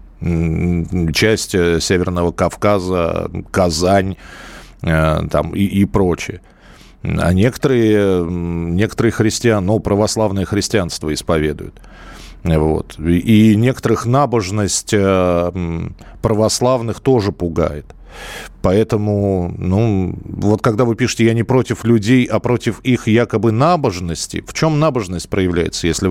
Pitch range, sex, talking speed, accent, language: 90-125 Hz, male, 95 wpm, native, Russian